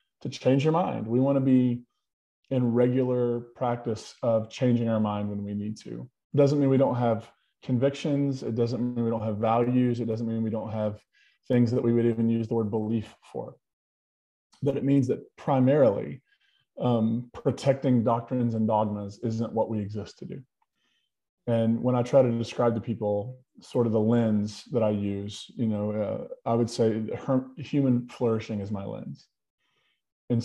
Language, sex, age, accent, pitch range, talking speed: English, male, 20-39, American, 110-125 Hz, 180 wpm